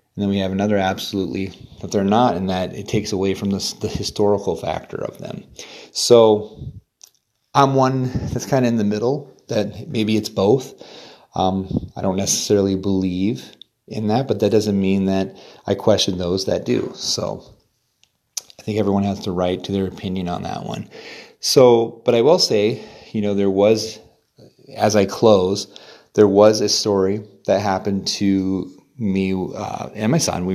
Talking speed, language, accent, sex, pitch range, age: 175 wpm, English, American, male, 95-110 Hz, 30-49